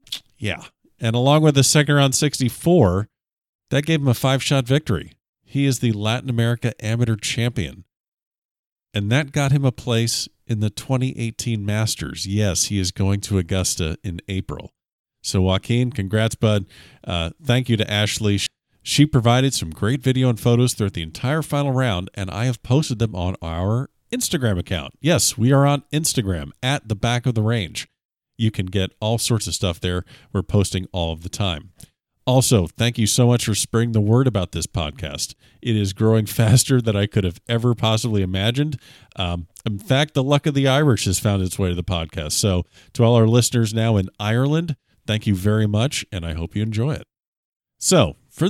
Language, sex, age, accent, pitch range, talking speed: English, male, 40-59, American, 95-130 Hz, 190 wpm